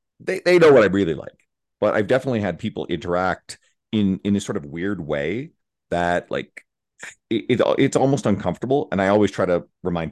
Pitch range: 80-100 Hz